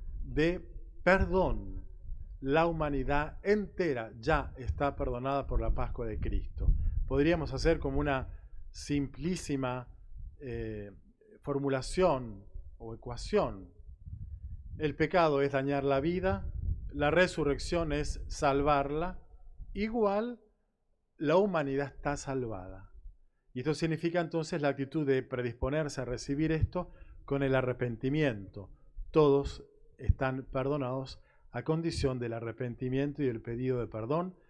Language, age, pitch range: Spanish, 40-59, 105-155 Hz